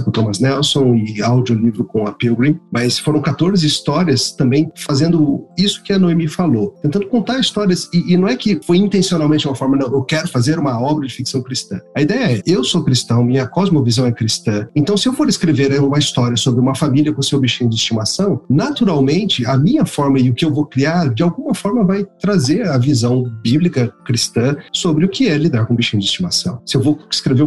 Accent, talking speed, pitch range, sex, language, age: Brazilian, 215 wpm, 125-155 Hz, male, Portuguese, 40-59